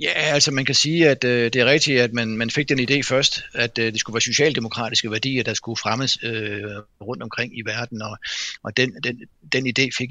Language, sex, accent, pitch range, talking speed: Danish, male, native, 110-125 Hz, 200 wpm